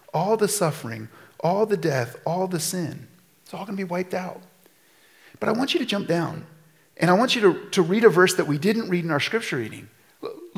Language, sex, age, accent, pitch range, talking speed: English, male, 40-59, American, 180-255 Hz, 235 wpm